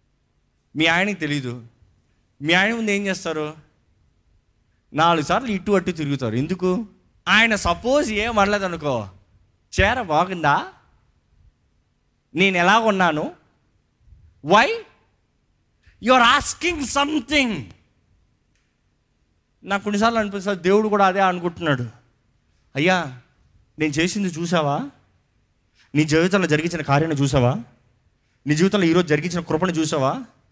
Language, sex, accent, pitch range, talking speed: Telugu, male, native, 120-205 Hz, 100 wpm